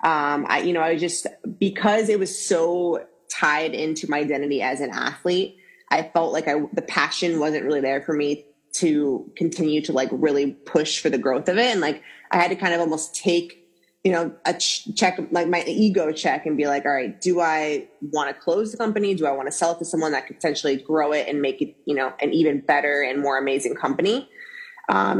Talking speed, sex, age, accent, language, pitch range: 225 wpm, female, 20-39, American, English, 145-185 Hz